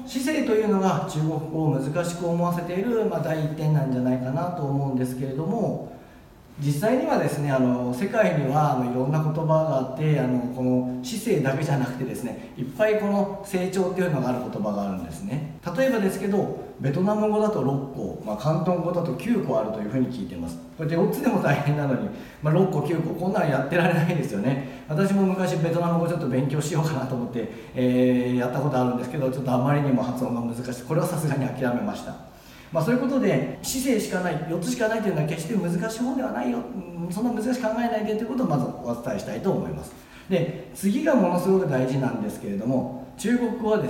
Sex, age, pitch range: male, 40-59, 130-200 Hz